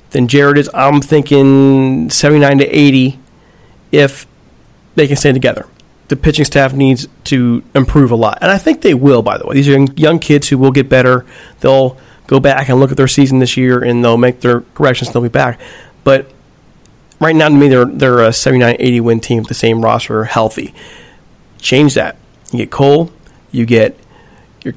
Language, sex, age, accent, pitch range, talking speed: English, male, 40-59, American, 125-150 Hz, 195 wpm